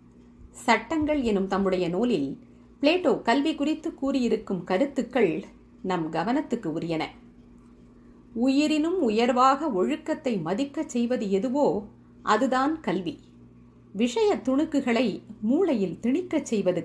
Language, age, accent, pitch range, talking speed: Tamil, 50-69, native, 160-265 Hz, 90 wpm